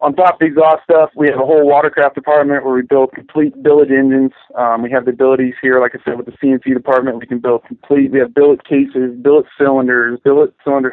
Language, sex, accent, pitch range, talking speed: English, male, American, 125-145 Hz, 235 wpm